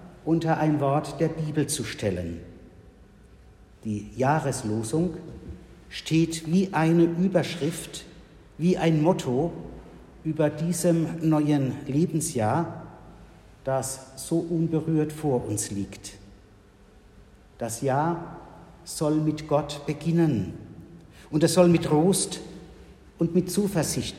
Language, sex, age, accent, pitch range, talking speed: German, male, 60-79, German, 110-160 Hz, 100 wpm